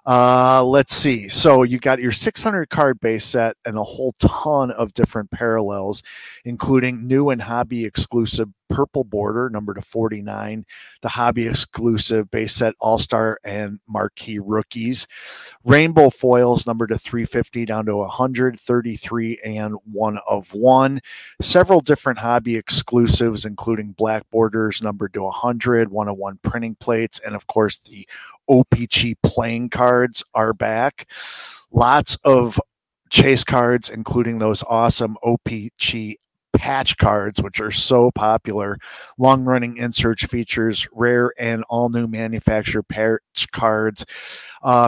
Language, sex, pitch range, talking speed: English, male, 110-125 Hz, 130 wpm